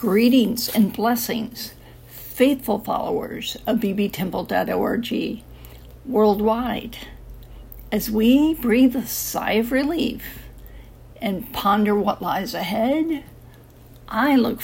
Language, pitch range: English, 195-240 Hz